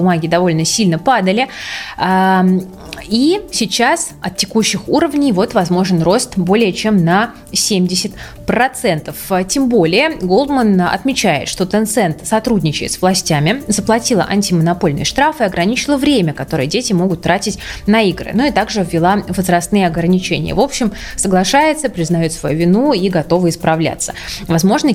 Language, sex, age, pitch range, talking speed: Russian, female, 20-39, 175-220 Hz, 125 wpm